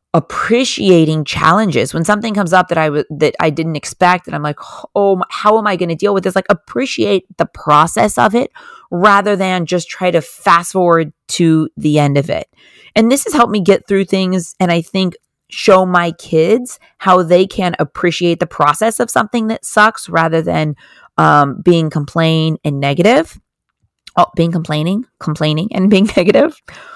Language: English